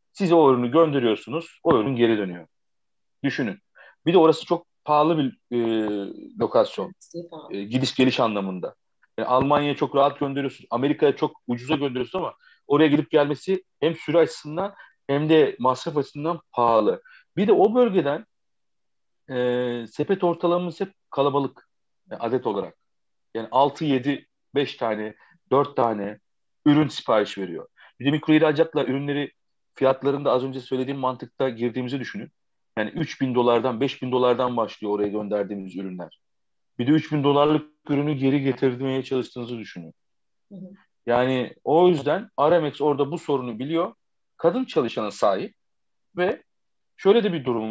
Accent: native